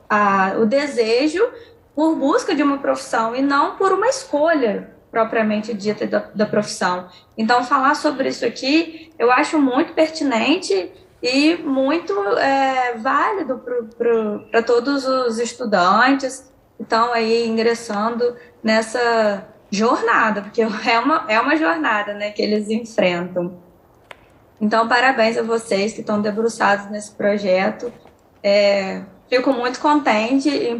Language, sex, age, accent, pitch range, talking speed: Portuguese, female, 10-29, Brazilian, 210-275 Hz, 125 wpm